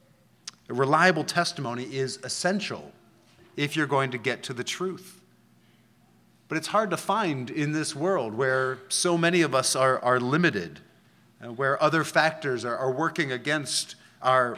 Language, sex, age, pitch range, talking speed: English, male, 30-49, 130-170 Hz, 155 wpm